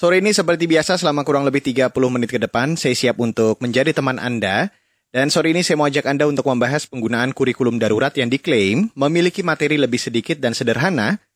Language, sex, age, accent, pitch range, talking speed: Indonesian, male, 30-49, native, 120-160 Hz, 195 wpm